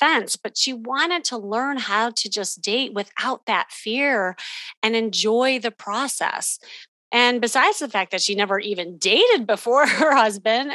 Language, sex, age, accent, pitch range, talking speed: English, female, 30-49, American, 195-255 Hz, 155 wpm